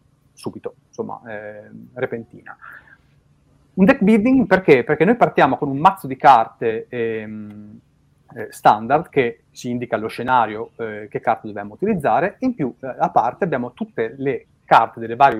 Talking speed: 150 wpm